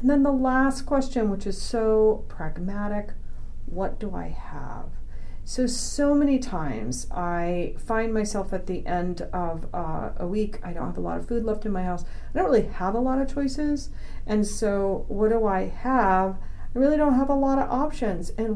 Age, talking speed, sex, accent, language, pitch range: 40-59, 195 wpm, female, American, English, 180-240 Hz